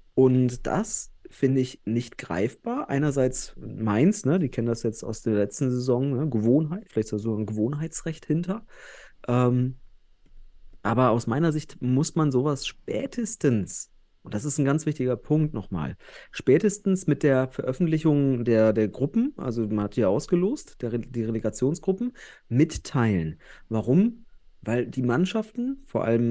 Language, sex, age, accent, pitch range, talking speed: German, male, 30-49, German, 115-155 Hz, 145 wpm